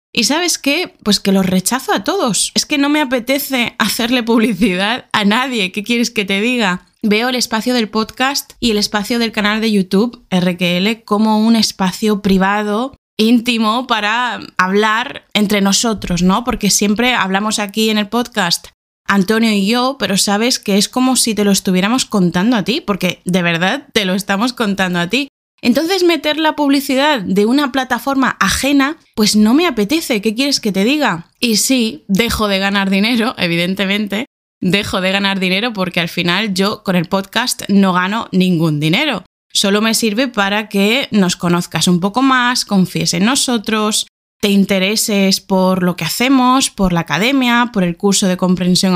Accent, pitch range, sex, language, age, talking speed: Spanish, 190-245 Hz, female, Spanish, 20-39, 175 wpm